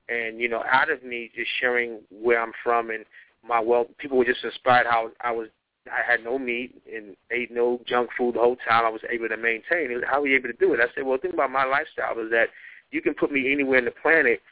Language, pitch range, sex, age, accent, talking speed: English, 115-130 Hz, male, 30-49, American, 260 wpm